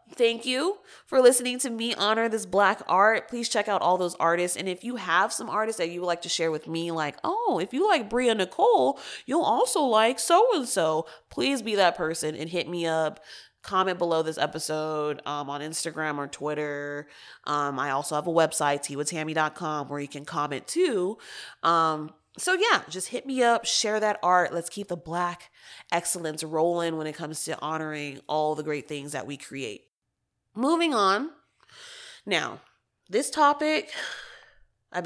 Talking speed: 180 wpm